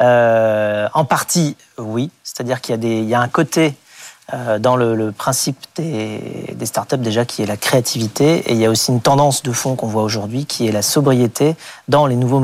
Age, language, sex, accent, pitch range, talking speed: 40-59, French, male, French, 115-140 Hz, 215 wpm